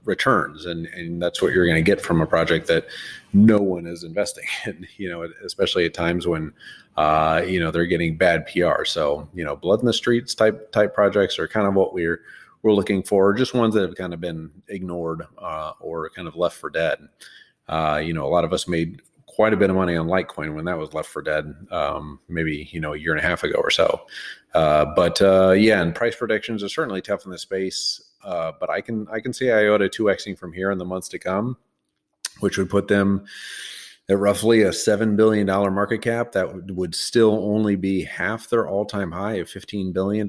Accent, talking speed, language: American, 230 wpm, English